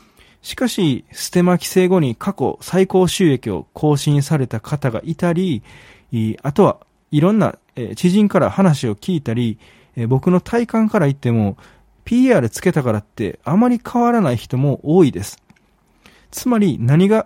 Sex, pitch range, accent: male, 120-190 Hz, native